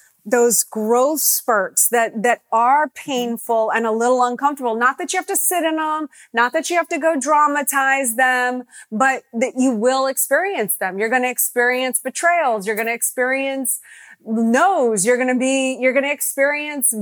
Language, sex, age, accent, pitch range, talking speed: English, female, 30-49, American, 225-270 Hz, 180 wpm